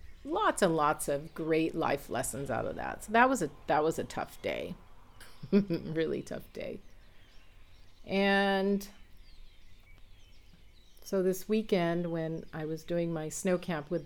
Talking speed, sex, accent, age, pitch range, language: 145 wpm, female, American, 40-59, 140-170 Hz, English